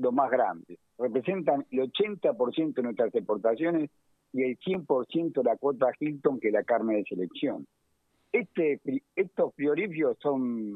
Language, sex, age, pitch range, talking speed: Spanish, male, 50-69, 115-150 Hz, 145 wpm